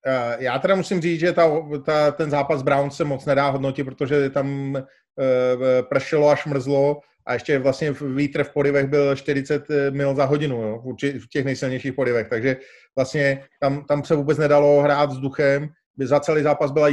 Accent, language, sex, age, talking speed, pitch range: native, Czech, male, 30-49, 175 wpm, 135-150 Hz